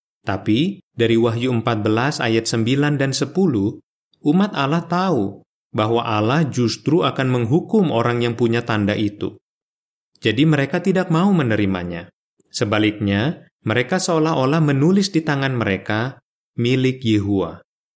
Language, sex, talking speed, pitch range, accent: Indonesian, male, 115 wpm, 105-155 Hz, native